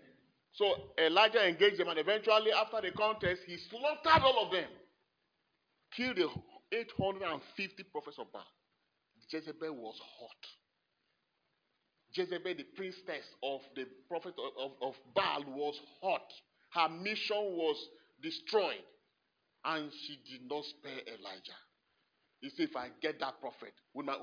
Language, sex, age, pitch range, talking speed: English, male, 40-59, 145-210 Hz, 135 wpm